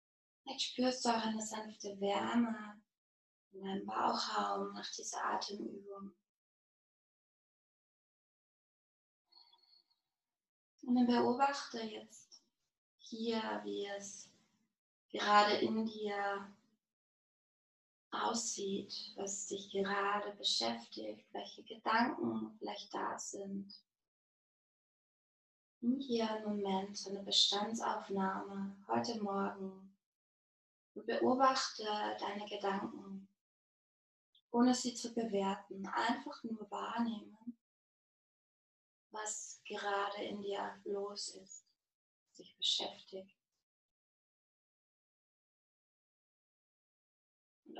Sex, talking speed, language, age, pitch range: female, 75 wpm, German, 20-39, 195-225 Hz